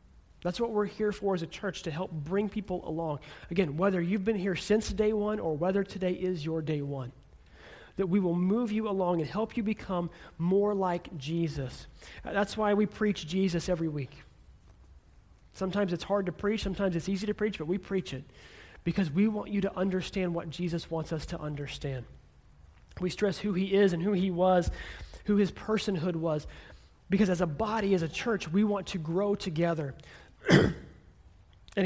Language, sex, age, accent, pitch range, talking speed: English, male, 30-49, American, 155-200 Hz, 190 wpm